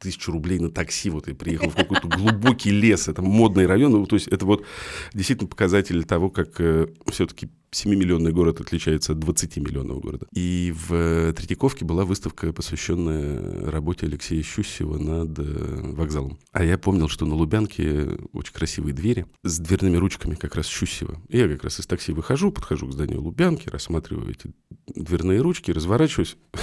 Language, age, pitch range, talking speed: Russian, 40-59, 80-105 Hz, 160 wpm